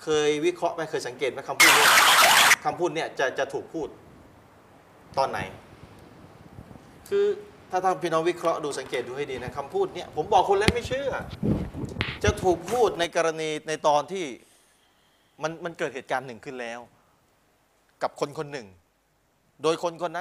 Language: Thai